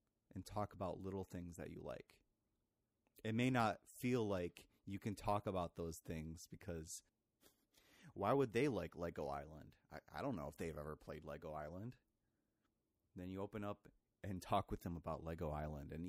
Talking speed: 180 wpm